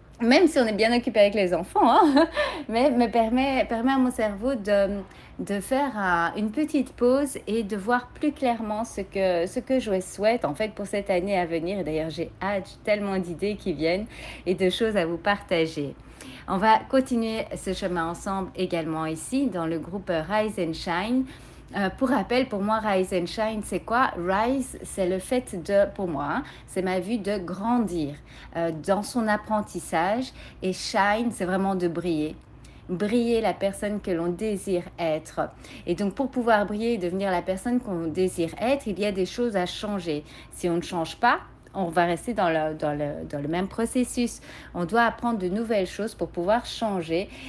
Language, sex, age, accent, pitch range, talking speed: French, female, 40-59, French, 175-230 Hz, 195 wpm